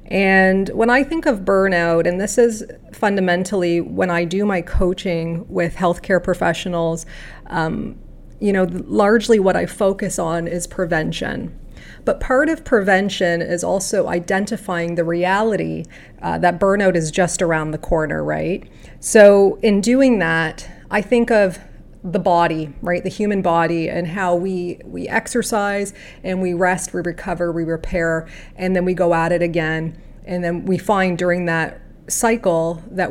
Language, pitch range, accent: English, 170-200 Hz, American